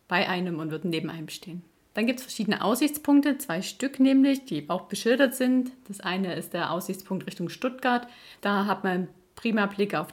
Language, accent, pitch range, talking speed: German, German, 180-235 Hz, 190 wpm